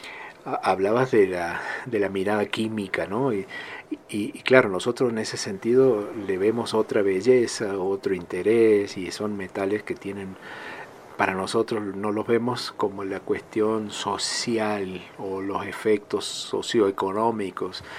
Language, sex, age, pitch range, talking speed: Spanish, male, 50-69, 100-120 Hz, 135 wpm